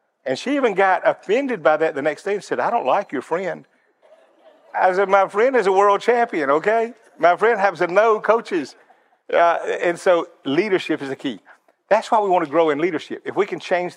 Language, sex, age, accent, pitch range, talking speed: English, male, 50-69, American, 150-225 Hz, 215 wpm